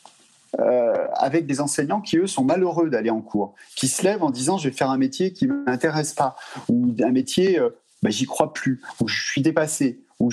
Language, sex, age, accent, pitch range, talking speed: French, male, 30-49, French, 130-195 Hz, 220 wpm